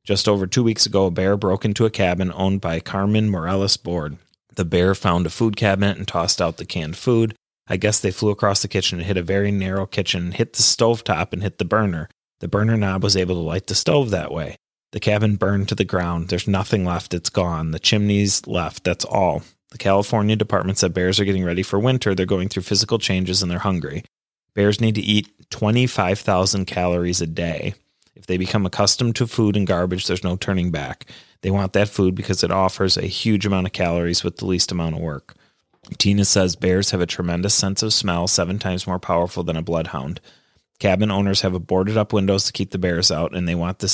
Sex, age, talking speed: male, 30-49, 220 wpm